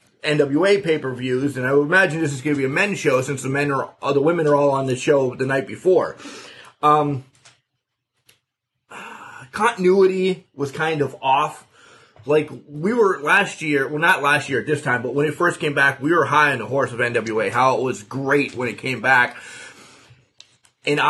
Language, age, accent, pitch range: English, 30-49, American, 130-160 Hz